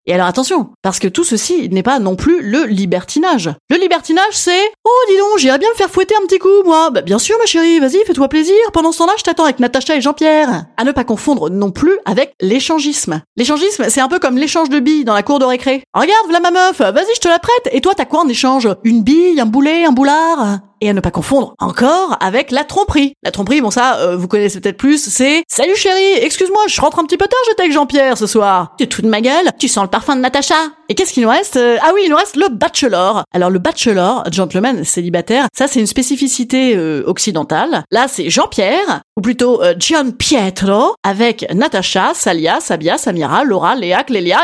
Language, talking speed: French, 230 wpm